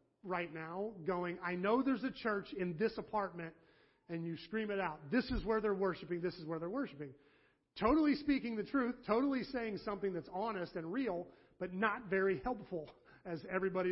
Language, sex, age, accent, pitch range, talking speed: English, male, 40-59, American, 160-215 Hz, 185 wpm